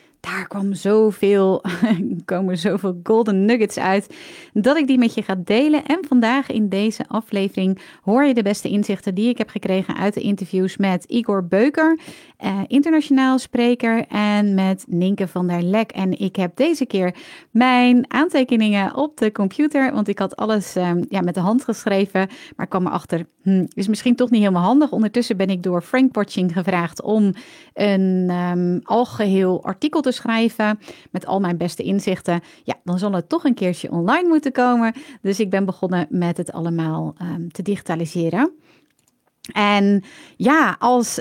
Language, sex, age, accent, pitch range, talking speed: Dutch, female, 30-49, Dutch, 190-245 Hz, 170 wpm